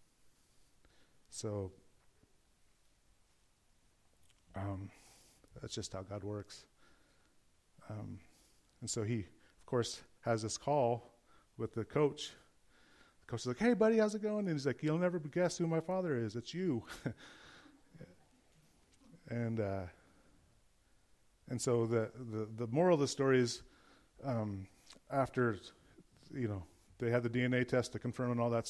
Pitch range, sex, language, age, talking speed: 105-130 Hz, male, English, 30-49, 140 wpm